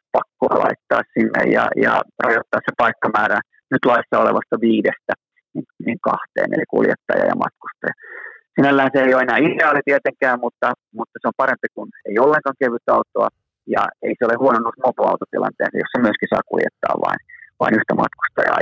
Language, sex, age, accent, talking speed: Finnish, male, 30-49, native, 160 wpm